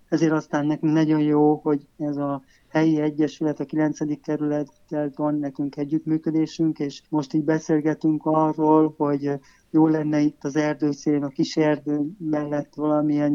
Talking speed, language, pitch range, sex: 145 wpm, Hungarian, 145-155 Hz, male